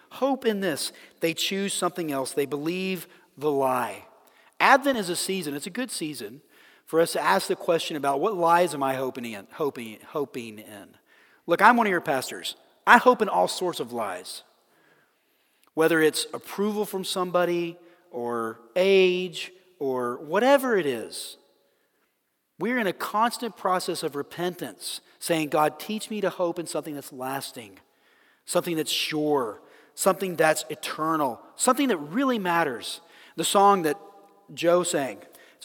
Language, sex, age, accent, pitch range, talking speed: English, male, 40-59, American, 150-195 Hz, 155 wpm